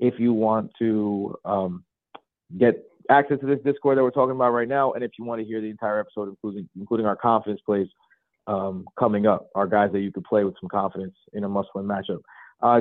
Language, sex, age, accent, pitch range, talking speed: English, male, 30-49, American, 110-130 Hz, 220 wpm